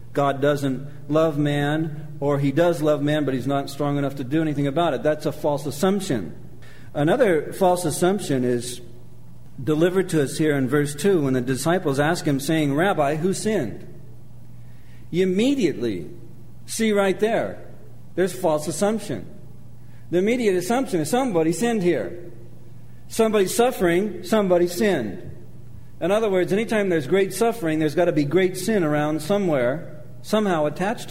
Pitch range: 130-185 Hz